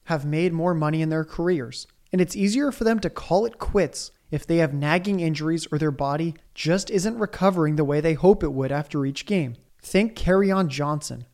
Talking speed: 205 wpm